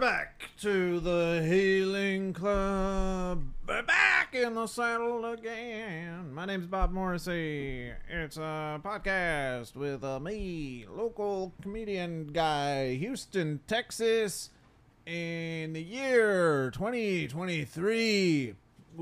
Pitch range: 145-205 Hz